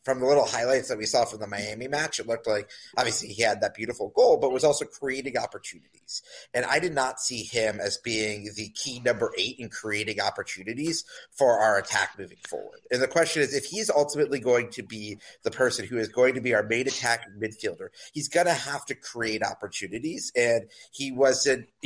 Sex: male